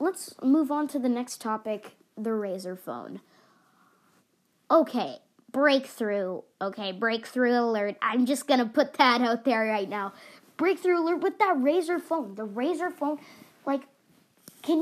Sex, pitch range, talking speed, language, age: female, 220-285 Hz, 145 wpm, English, 20-39